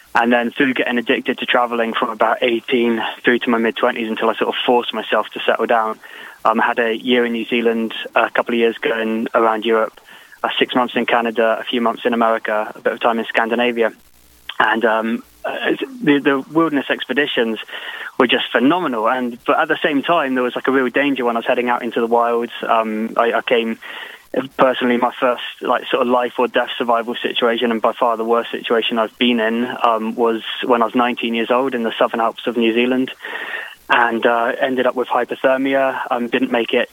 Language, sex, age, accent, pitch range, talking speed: English, male, 20-39, British, 115-130 Hz, 215 wpm